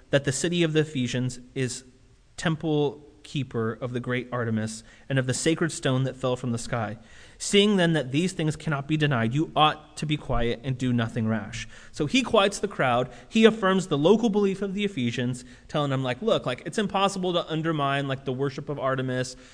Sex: male